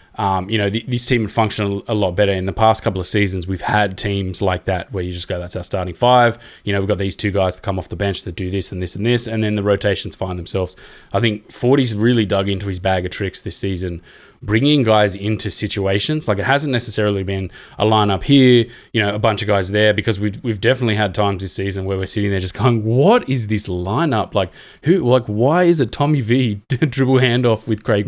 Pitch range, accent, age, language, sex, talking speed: 100-120 Hz, Australian, 20-39, English, male, 250 wpm